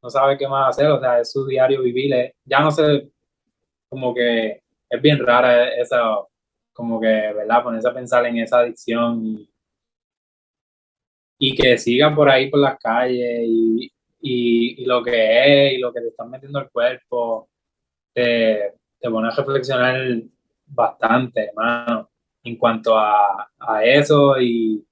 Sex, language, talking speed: male, Spanish, 155 wpm